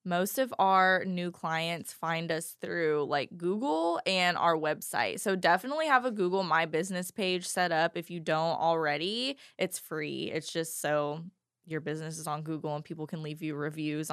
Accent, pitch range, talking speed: American, 160-190 Hz, 185 wpm